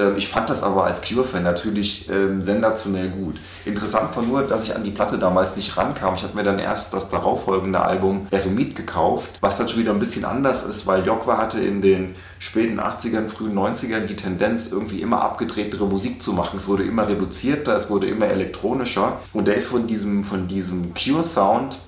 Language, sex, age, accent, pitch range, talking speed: German, male, 30-49, German, 95-115 Hz, 200 wpm